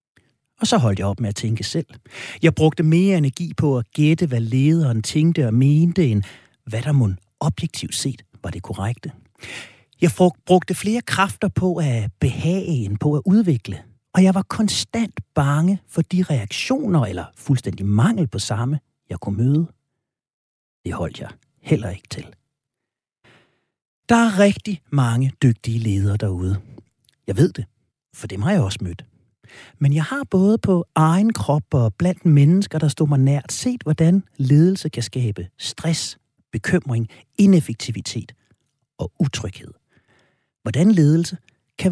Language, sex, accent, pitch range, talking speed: Danish, male, native, 110-165 Hz, 150 wpm